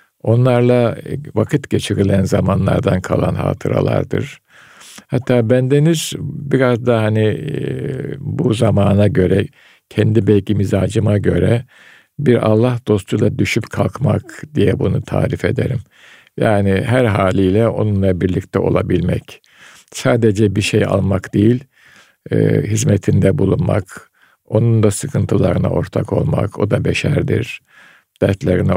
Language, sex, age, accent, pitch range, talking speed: Turkish, male, 50-69, native, 100-140 Hz, 105 wpm